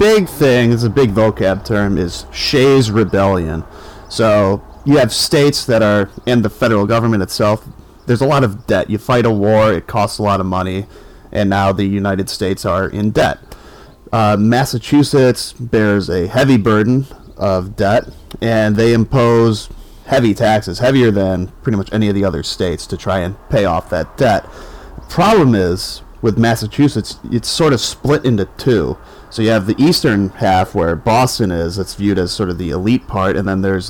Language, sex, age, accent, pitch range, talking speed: English, male, 30-49, American, 95-115 Hz, 180 wpm